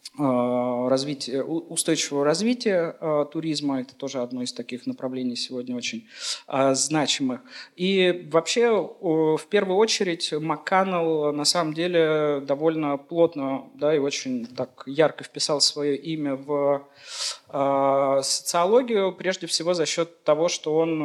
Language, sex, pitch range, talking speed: Russian, male, 140-175 Hz, 125 wpm